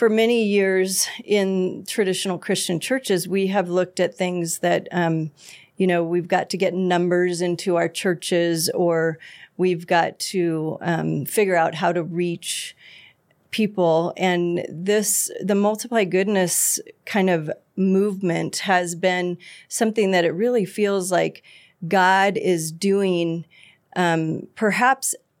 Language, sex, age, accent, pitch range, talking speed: English, female, 40-59, American, 165-195 Hz, 130 wpm